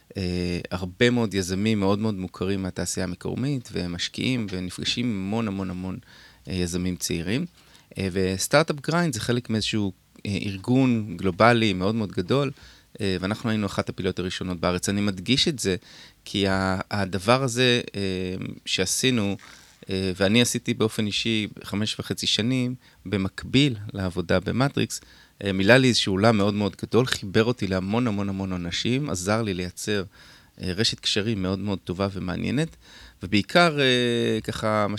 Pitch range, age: 95-115 Hz, 30-49